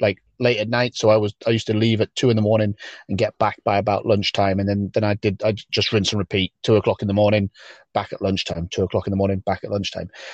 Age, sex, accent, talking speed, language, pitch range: 30-49, male, British, 280 wpm, English, 105-120 Hz